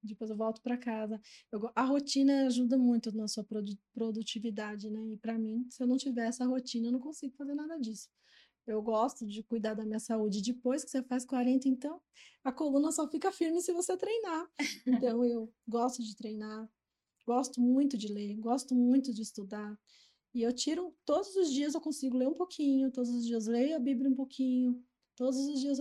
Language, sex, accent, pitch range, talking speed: Portuguese, female, Brazilian, 225-265 Hz, 200 wpm